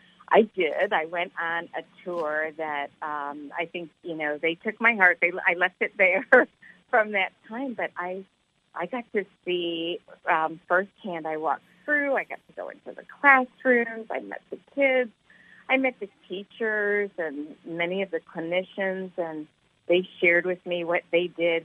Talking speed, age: 175 wpm, 40-59